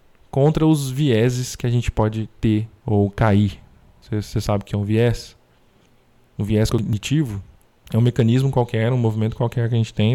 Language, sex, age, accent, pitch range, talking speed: Portuguese, male, 20-39, Brazilian, 105-130 Hz, 190 wpm